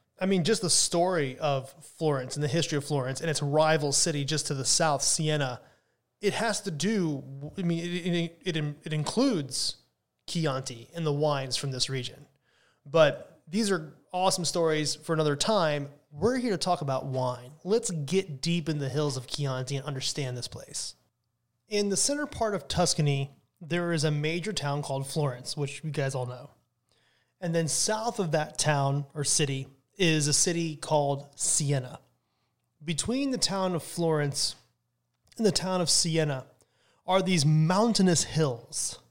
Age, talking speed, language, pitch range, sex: 20-39, 170 wpm, English, 145-180 Hz, male